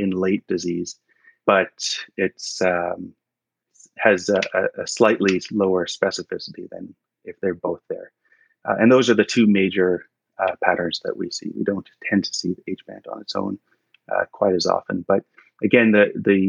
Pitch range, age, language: 95-110 Hz, 30-49, English